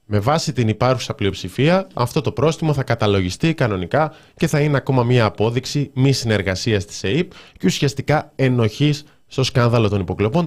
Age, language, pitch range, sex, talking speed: 20-39, Greek, 105-145 Hz, male, 160 wpm